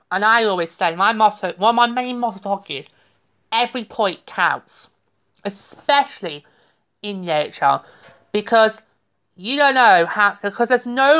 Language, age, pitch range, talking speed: English, 30-49, 180-250 Hz, 160 wpm